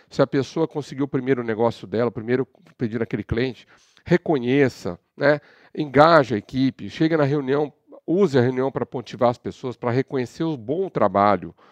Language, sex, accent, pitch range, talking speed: Portuguese, male, Brazilian, 125-155 Hz, 165 wpm